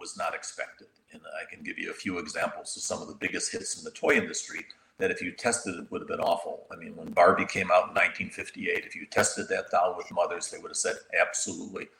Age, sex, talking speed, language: 50-69, male, 250 wpm, English